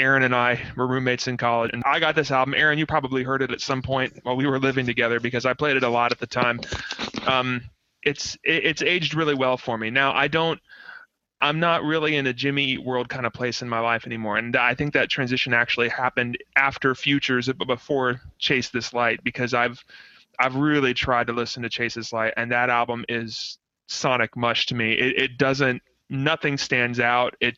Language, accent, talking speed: English, American, 220 wpm